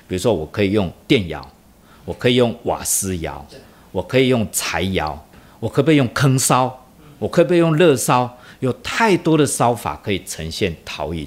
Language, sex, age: Chinese, male, 50-69